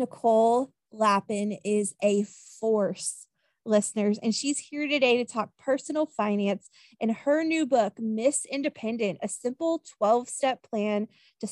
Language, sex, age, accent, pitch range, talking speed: English, female, 20-39, American, 215-260 Hz, 130 wpm